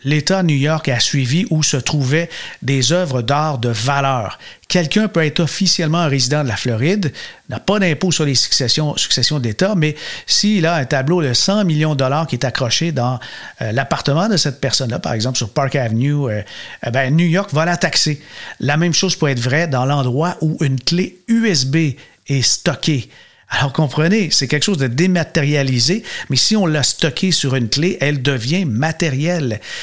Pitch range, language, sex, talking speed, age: 135-170 Hz, French, male, 190 wpm, 50-69